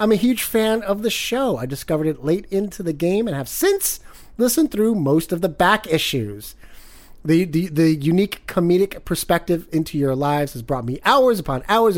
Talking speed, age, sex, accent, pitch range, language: 195 wpm, 30-49, male, American, 155-215 Hz, English